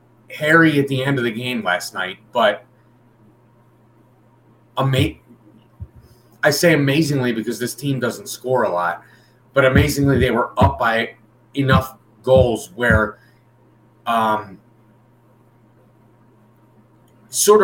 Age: 30-49